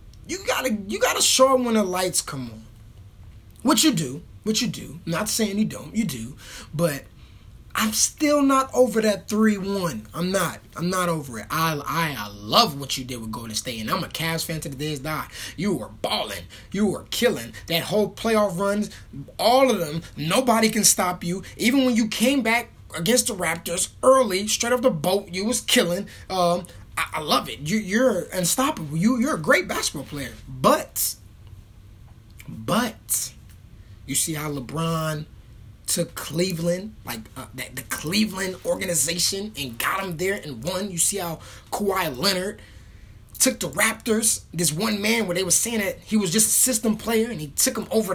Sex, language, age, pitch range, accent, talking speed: male, English, 20-39, 135-220 Hz, American, 185 wpm